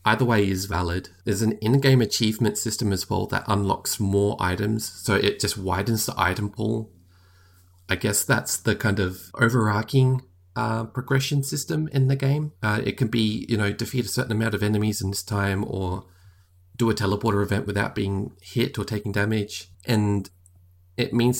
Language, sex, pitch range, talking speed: English, male, 95-115 Hz, 180 wpm